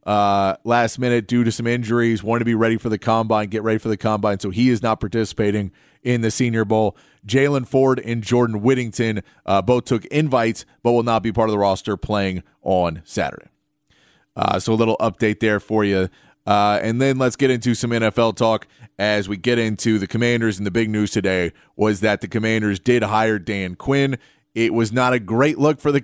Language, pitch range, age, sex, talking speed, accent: English, 110-130 Hz, 30-49, male, 210 wpm, American